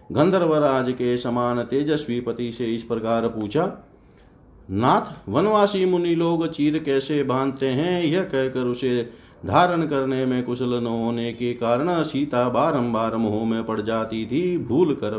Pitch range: 115-155 Hz